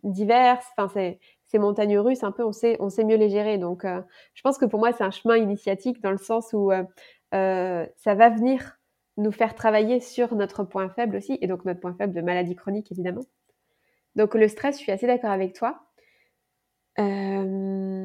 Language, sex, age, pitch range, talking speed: French, female, 20-39, 195-235 Hz, 205 wpm